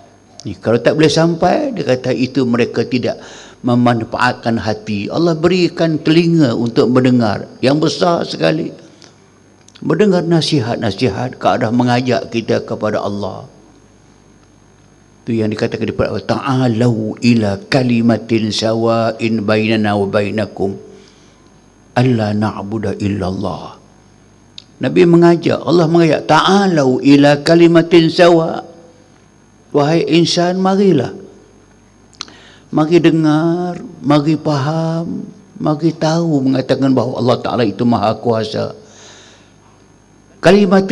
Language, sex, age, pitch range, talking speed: Malayalam, male, 60-79, 110-160 Hz, 95 wpm